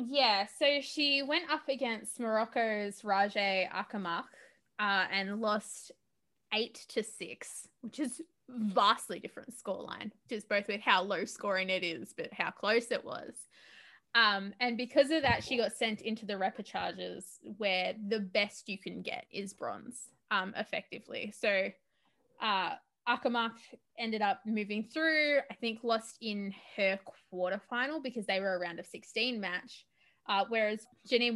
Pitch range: 200-250 Hz